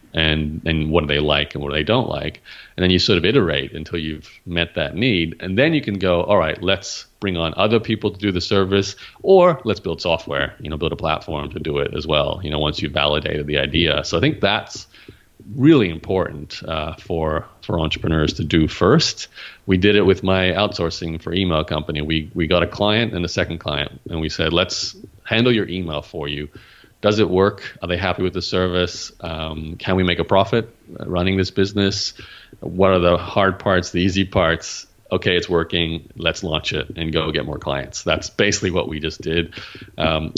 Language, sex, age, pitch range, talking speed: English, male, 30-49, 80-95 Hz, 215 wpm